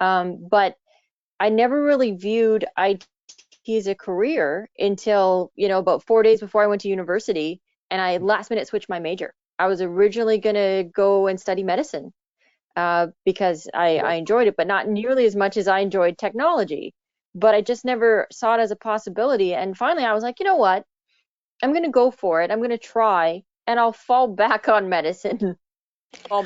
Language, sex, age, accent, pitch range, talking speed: English, female, 20-39, American, 185-230 Hz, 195 wpm